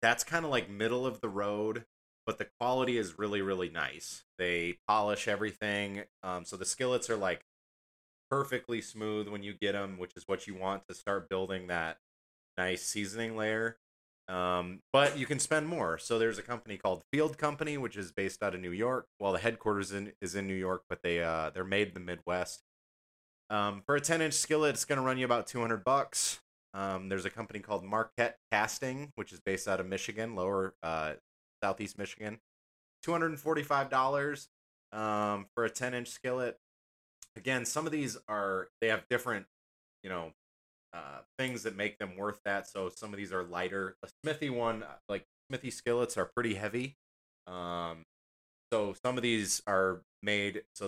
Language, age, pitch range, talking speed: English, 20-39, 90-120 Hz, 185 wpm